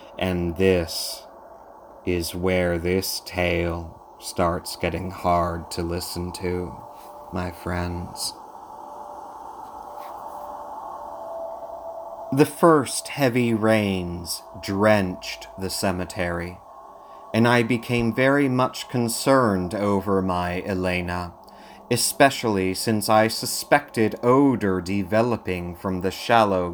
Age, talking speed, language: 30-49, 90 wpm, English